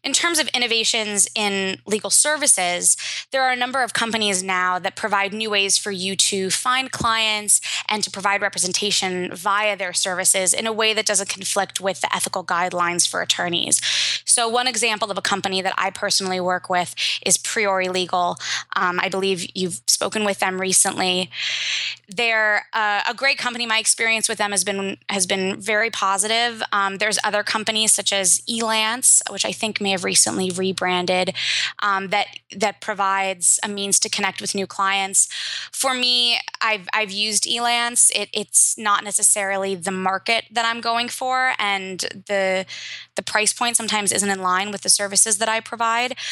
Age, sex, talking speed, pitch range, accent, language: 20-39, female, 170 wpm, 190-225 Hz, American, English